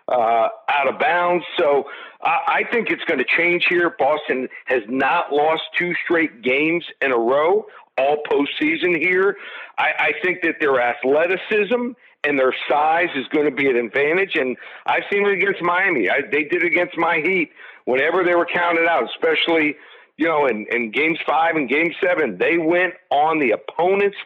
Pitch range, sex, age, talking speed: 150-200 Hz, male, 50-69, 180 wpm